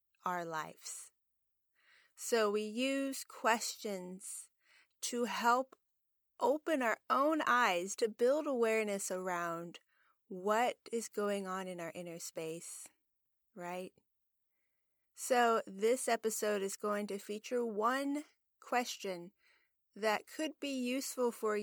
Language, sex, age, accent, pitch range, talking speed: English, female, 30-49, American, 185-235 Hz, 110 wpm